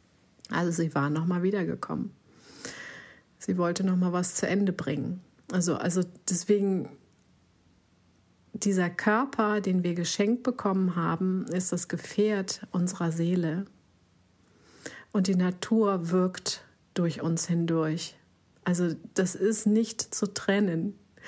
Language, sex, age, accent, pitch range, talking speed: German, female, 50-69, German, 165-185 Hz, 120 wpm